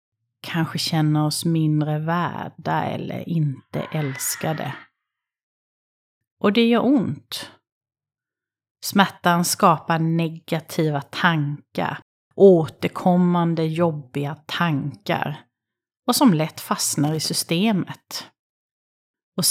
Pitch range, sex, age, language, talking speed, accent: 150-185 Hz, female, 30-49, Swedish, 80 wpm, native